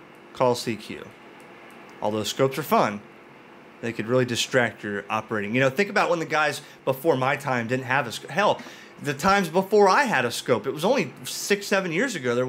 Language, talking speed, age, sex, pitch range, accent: English, 200 wpm, 30-49, male, 115-155 Hz, American